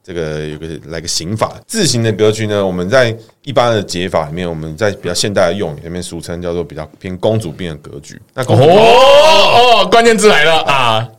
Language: Chinese